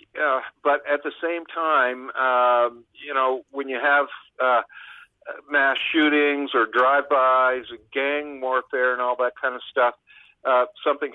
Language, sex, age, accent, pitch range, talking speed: English, male, 50-69, American, 125-150 Hz, 150 wpm